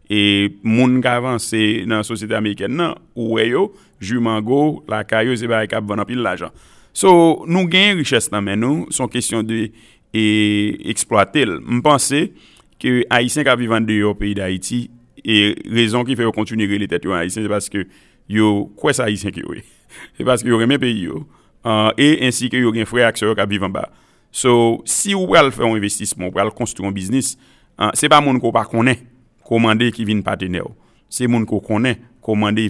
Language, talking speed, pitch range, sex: French, 190 wpm, 105-125 Hz, male